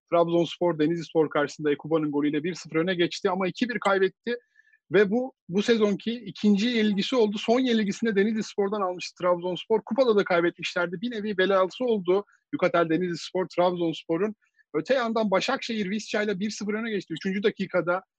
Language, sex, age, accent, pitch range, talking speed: Turkish, male, 50-69, native, 155-210 Hz, 150 wpm